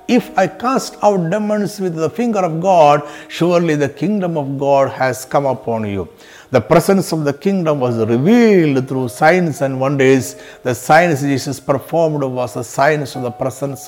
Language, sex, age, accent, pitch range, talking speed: Malayalam, male, 60-79, native, 140-205 Hz, 175 wpm